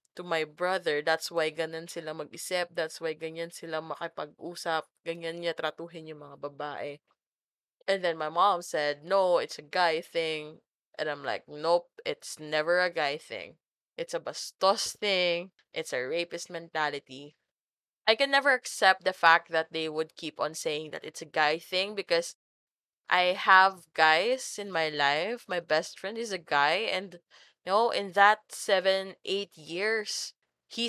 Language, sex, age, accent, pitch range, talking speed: English, female, 20-39, Filipino, 160-190 Hz, 160 wpm